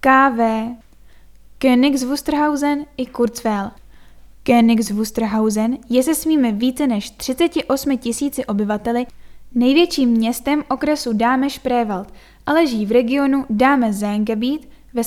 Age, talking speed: 10-29, 95 wpm